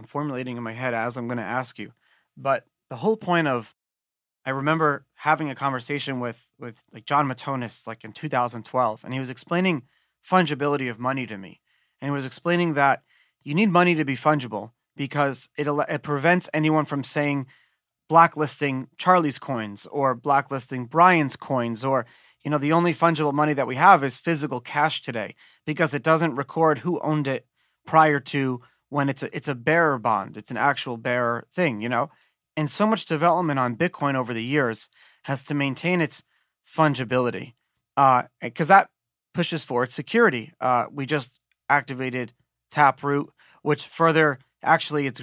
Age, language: 30-49, English